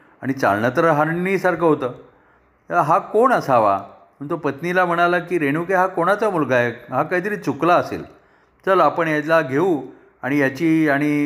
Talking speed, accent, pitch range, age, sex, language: 150 wpm, native, 140-170 Hz, 40-59, male, Marathi